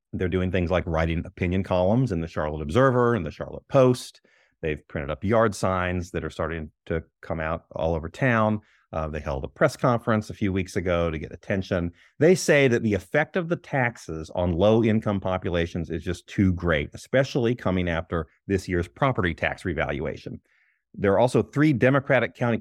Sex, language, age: male, English, 30-49